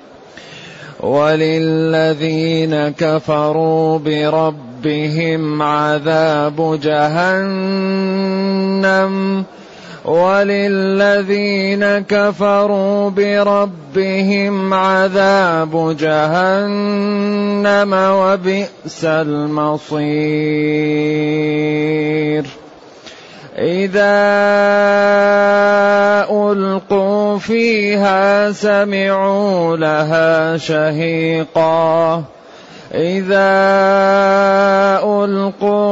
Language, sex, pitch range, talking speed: Arabic, male, 155-200 Hz, 35 wpm